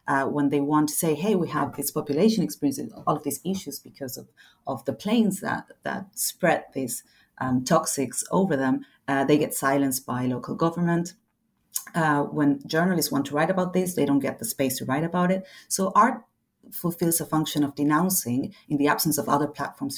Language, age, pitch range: English, 40-59, 140-180 Hz